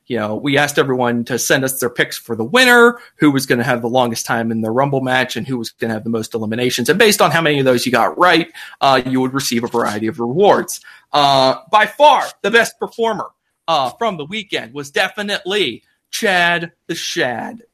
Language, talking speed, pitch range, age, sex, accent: English, 225 wpm, 130-215 Hz, 30-49, male, American